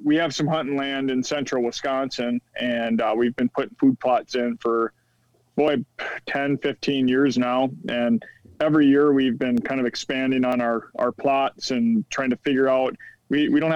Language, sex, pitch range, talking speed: English, male, 120-145 Hz, 185 wpm